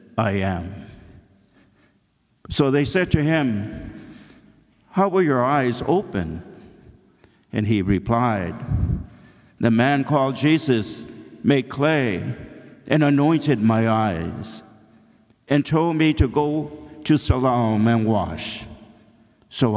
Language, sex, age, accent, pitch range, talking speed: English, male, 60-79, American, 110-145 Hz, 105 wpm